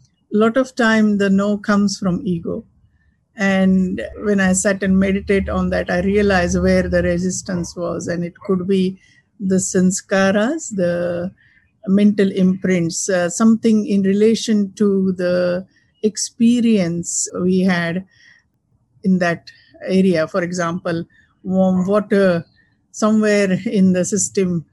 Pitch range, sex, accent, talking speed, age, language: 180-215 Hz, female, Indian, 125 wpm, 50-69, English